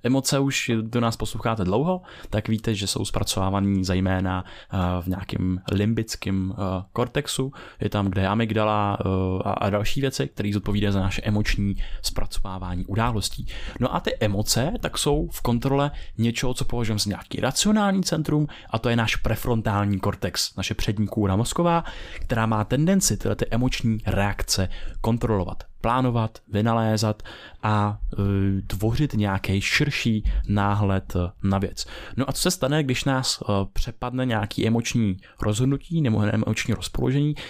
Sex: male